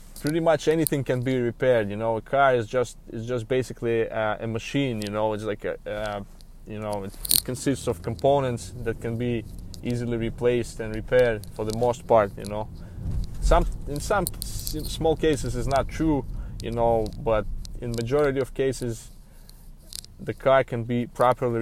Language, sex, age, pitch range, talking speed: English, male, 20-39, 110-125 Hz, 180 wpm